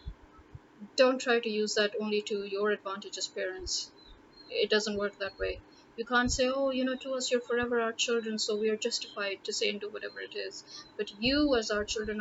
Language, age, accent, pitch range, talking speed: English, 30-49, Indian, 205-255 Hz, 215 wpm